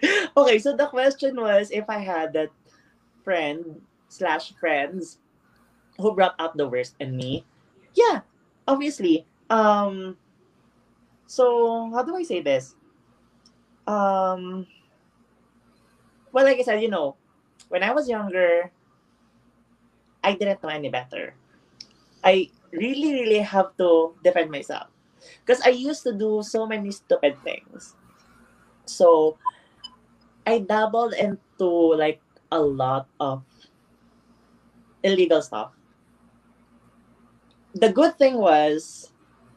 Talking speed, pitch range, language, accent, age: 110 wpm, 155-230 Hz, English, Filipino, 20-39